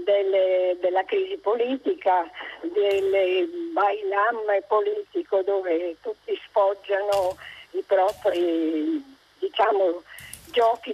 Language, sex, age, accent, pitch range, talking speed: Italian, female, 50-69, native, 190-305 Hz, 65 wpm